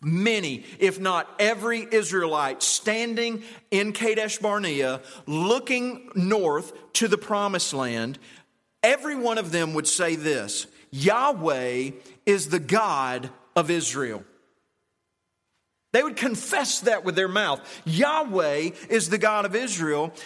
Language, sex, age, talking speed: English, male, 40-59, 120 wpm